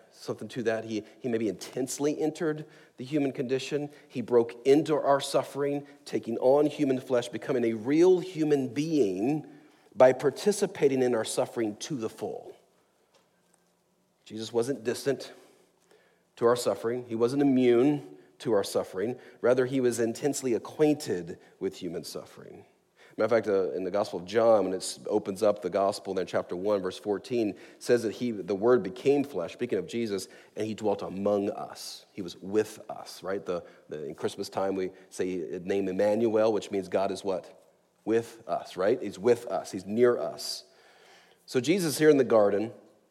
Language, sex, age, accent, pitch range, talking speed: English, male, 40-59, American, 115-150 Hz, 170 wpm